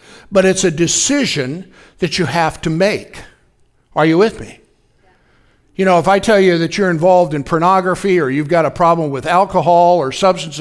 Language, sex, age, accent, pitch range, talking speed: English, male, 60-79, American, 175-225 Hz, 185 wpm